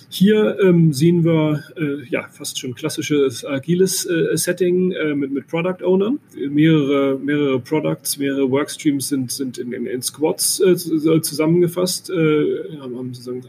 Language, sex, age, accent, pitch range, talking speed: German, male, 30-49, German, 135-170 Hz, 150 wpm